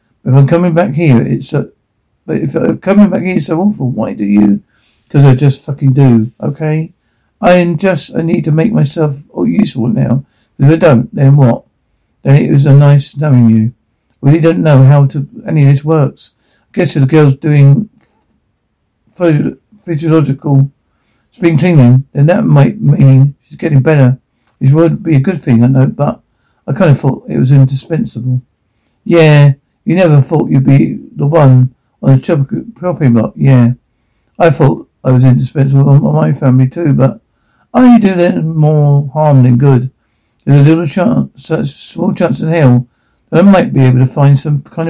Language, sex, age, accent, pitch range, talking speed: English, male, 50-69, British, 130-160 Hz, 185 wpm